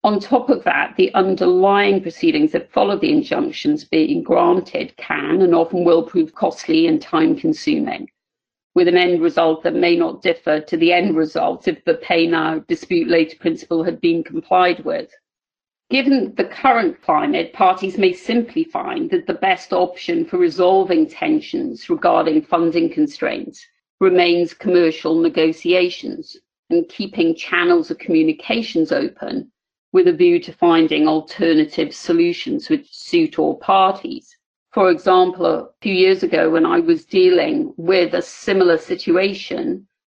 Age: 50-69